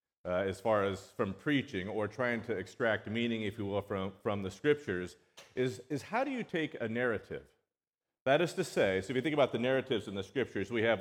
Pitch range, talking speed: 105-135 Hz, 230 wpm